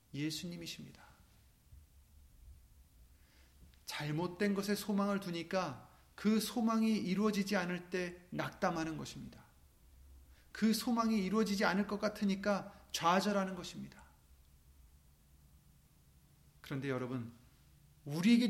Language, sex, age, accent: Korean, male, 30-49, native